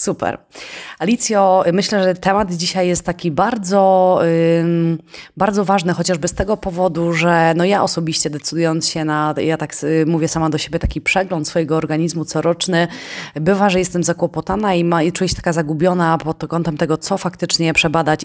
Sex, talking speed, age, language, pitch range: female, 160 wpm, 20-39, Polish, 155-180 Hz